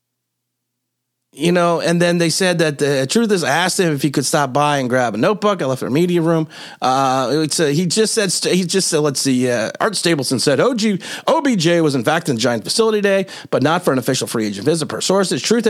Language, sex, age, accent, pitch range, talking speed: English, male, 30-49, American, 145-205 Hz, 250 wpm